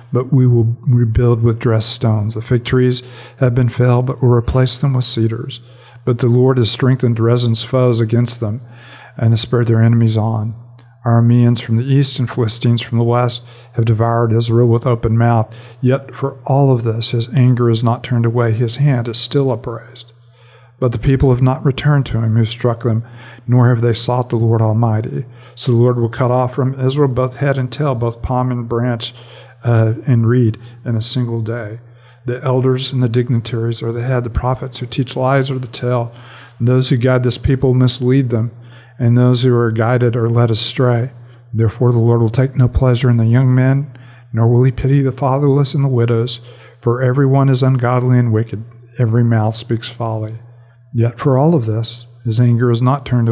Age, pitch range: 50-69, 115-125 Hz